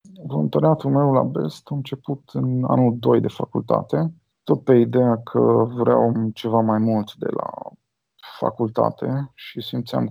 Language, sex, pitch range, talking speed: Romanian, male, 115-155 Hz, 140 wpm